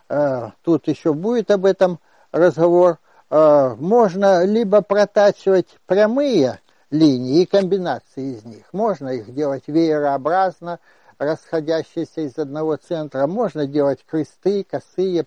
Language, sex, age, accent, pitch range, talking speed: Russian, male, 60-79, native, 150-195 Hz, 105 wpm